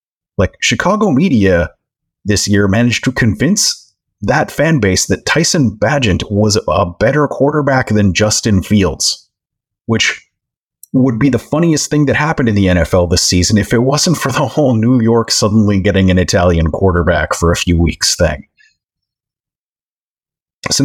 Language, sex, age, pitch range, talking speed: English, male, 30-49, 95-125 Hz, 155 wpm